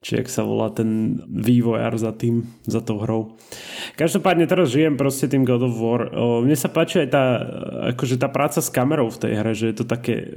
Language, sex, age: Slovak, male, 30-49